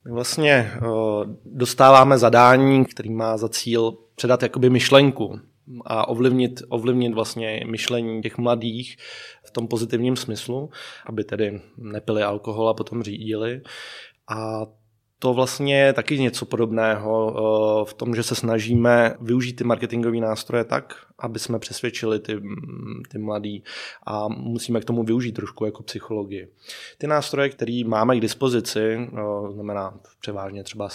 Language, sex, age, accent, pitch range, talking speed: Czech, male, 20-39, native, 110-125 Hz, 135 wpm